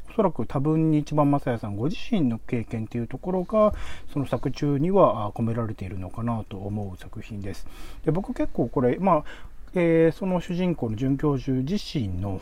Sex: male